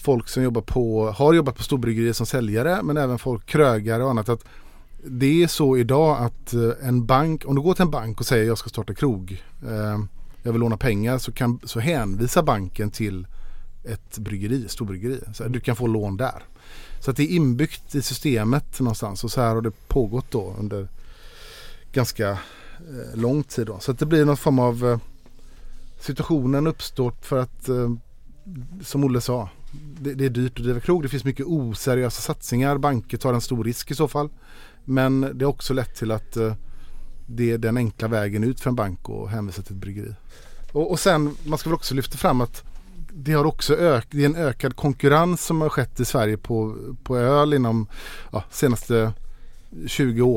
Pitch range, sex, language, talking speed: 115-145 Hz, male, Swedish, 190 wpm